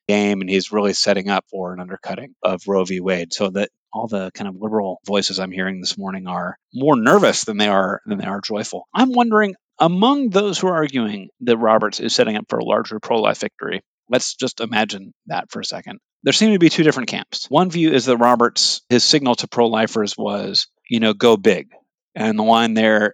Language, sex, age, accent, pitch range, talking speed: English, male, 30-49, American, 100-135 Hz, 220 wpm